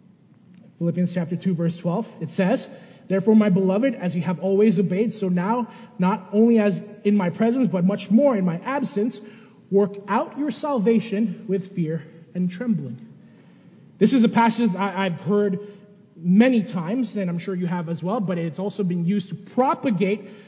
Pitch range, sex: 200-270 Hz, male